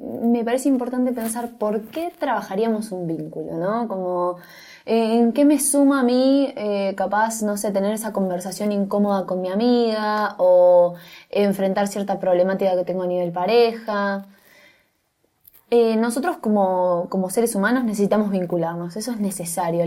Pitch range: 185-235 Hz